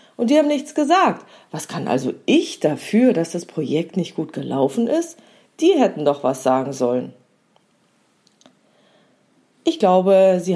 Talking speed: 150 wpm